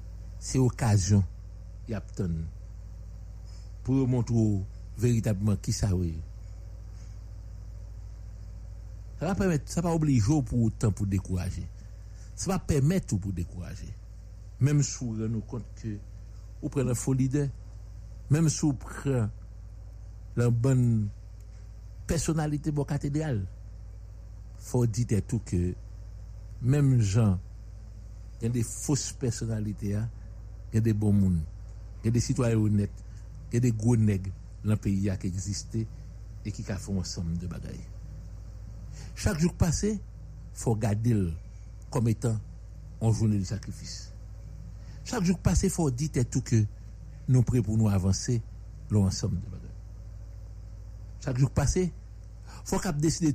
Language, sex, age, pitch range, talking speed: English, male, 60-79, 100-120 Hz, 125 wpm